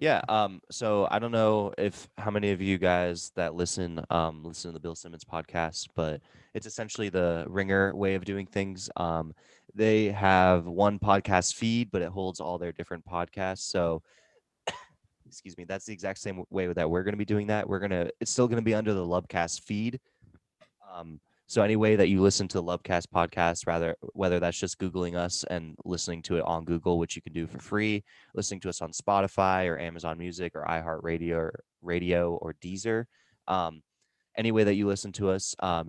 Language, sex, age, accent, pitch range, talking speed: English, male, 20-39, American, 85-105 Hz, 205 wpm